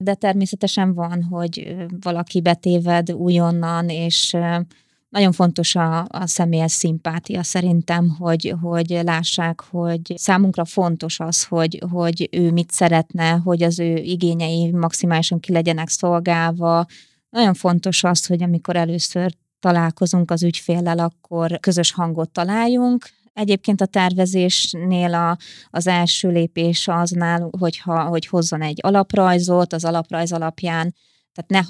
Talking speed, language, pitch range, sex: 125 wpm, Hungarian, 165-180 Hz, female